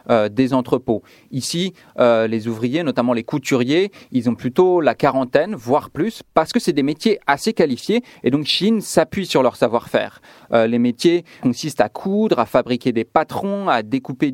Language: French